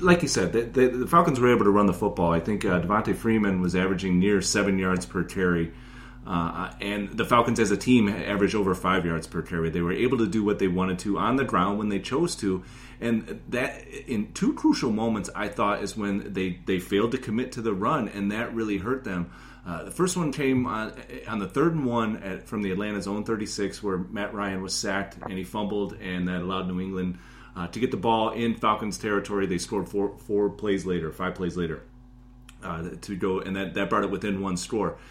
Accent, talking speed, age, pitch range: American, 230 wpm, 30-49, 95-120 Hz